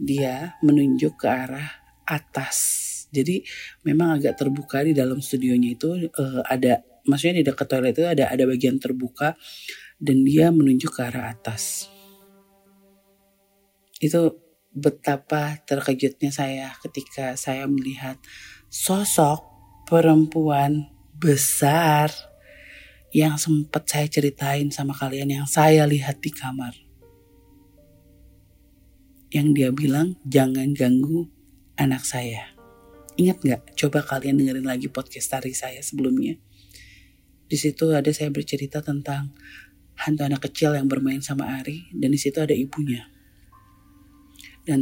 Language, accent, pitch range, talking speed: Indonesian, native, 130-160 Hz, 115 wpm